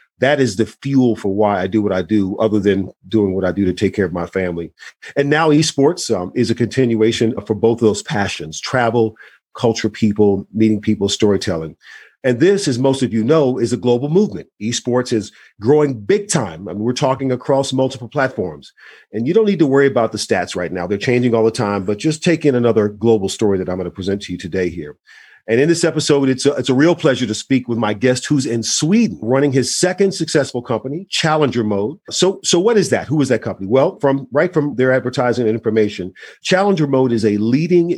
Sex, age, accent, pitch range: male, 40-59, American, 110-140 Hz